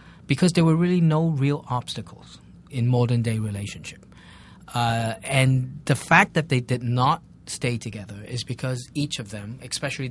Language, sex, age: Korean, male, 40-59